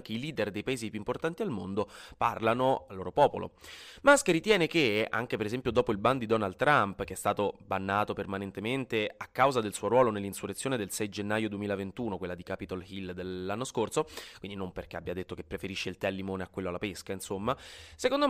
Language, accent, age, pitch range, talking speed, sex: Italian, native, 20-39, 100-140 Hz, 210 wpm, male